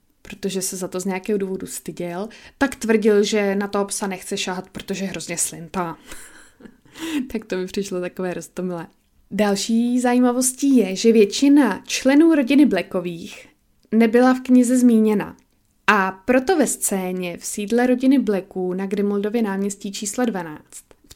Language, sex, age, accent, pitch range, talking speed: Czech, female, 20-39, native, 190-235 Hz, 145 wpm